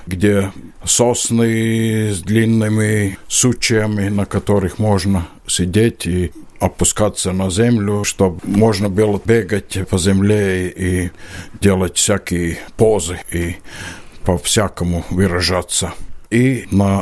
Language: Russian